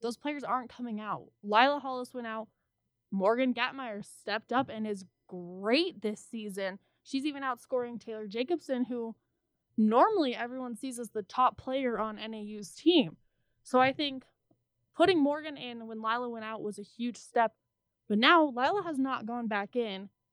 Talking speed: 165 wpm